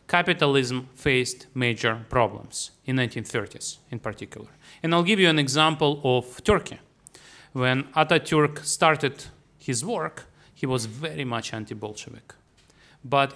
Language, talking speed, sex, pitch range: English, 120 wpm, male, 120-155 Hz